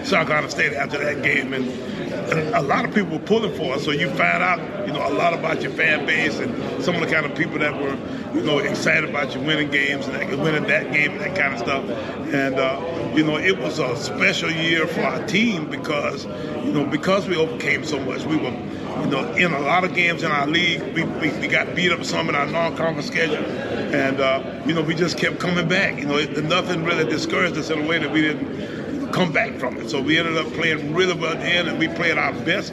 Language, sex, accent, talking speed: English, male, American, 250 wpm